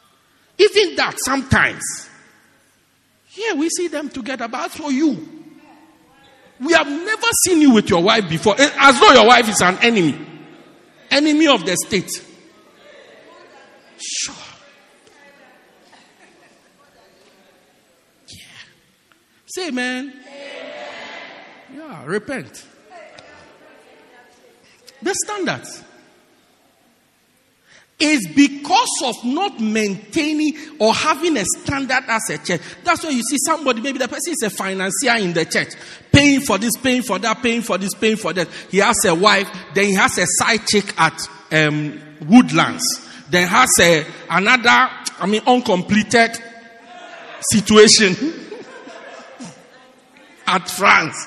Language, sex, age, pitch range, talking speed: English, male, 50-69, 205-300 Hz, 120 wpm